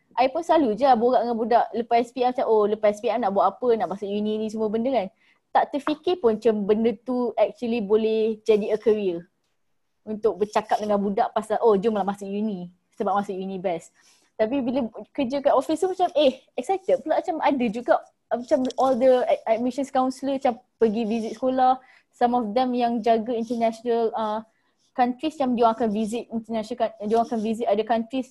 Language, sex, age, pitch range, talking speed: Malay, female, 20-39, 215-260 Hz, 190 wpm